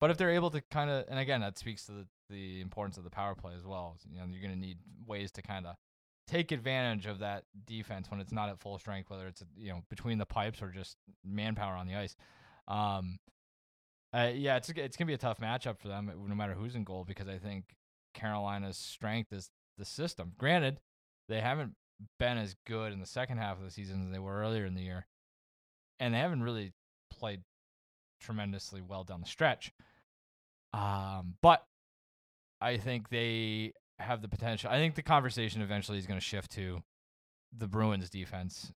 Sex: male